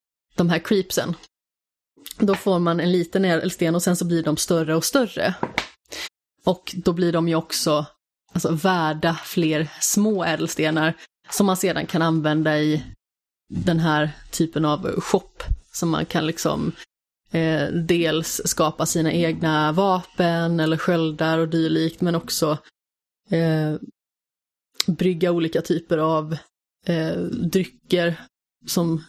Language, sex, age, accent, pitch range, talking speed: Swedish, female, 20-39, native, 160-185 Hz, 130 wpm